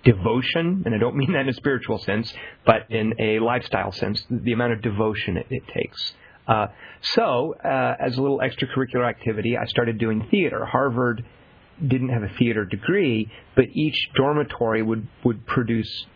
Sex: male